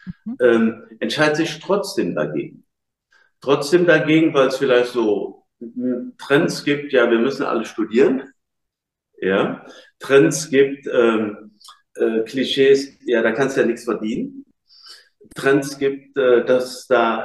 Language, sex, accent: German, male, German